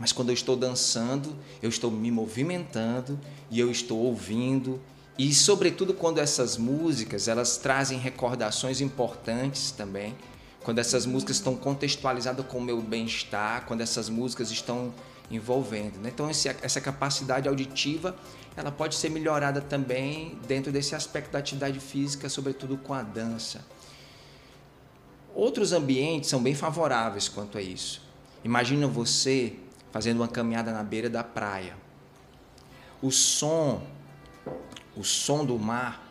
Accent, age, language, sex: Brazilian, 20-39, Portuguese, male